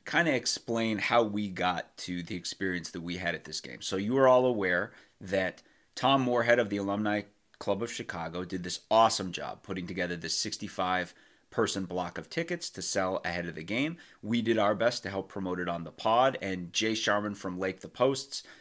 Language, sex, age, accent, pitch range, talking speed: English, male, 30-49, American, 95-115 Hz, 210 wpm